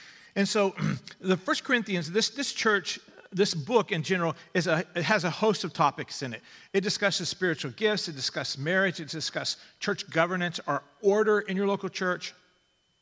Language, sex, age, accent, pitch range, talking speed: English, male, 40-59, American, 155-200 Hz, 180 wpm